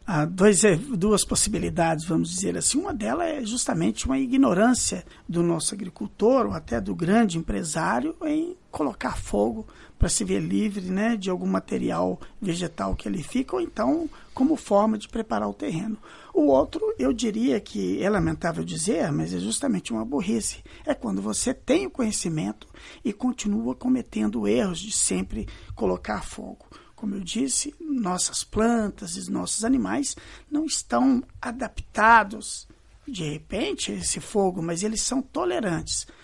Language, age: Portuguese, 50-69